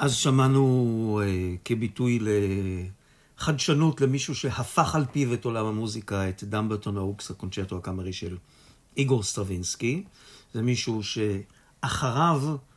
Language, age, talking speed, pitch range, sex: Hebrew, 50-69, 110 wpm, 100-135 Hz, male